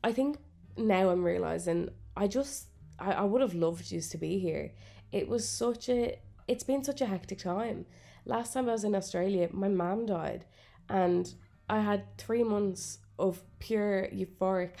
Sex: female